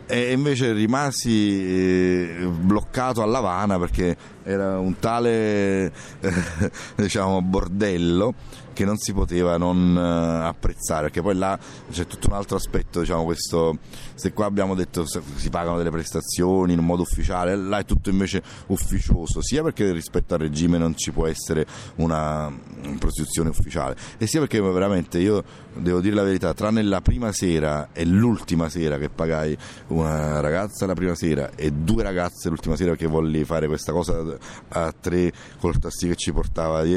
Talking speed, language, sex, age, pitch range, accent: 160 wpm, Italian, male, 30-49, 80-95 Hz, native